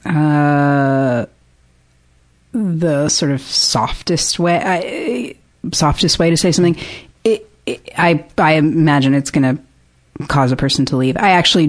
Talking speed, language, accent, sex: 140 wpm, English, American, female